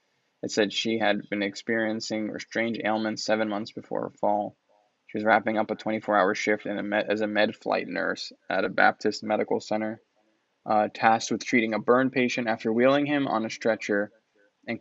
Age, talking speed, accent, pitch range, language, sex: 10-29, 180 wpm, American, 110-115 Hz, English, male